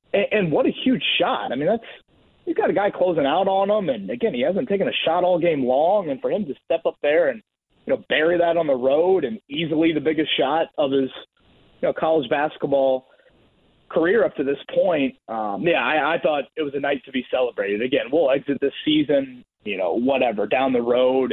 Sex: male